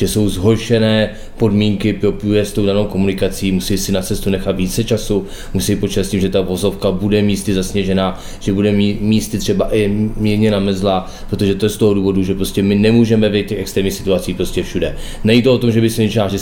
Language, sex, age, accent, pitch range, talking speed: Czech, male, 20-39, native, 95-105 Hz, 210 wpm